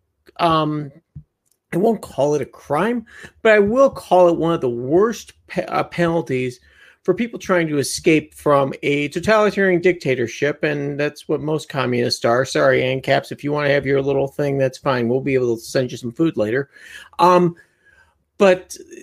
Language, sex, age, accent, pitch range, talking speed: English, male, 40-59, American, 130-170 Hz, 175 wpm